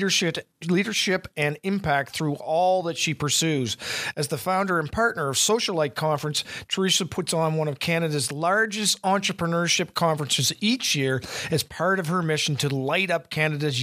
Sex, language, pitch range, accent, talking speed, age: male, English, 145-175 Hz, American, 155 wpm, 50-69